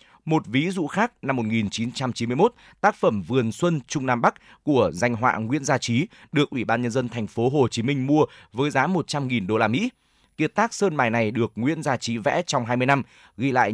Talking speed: 225 wpm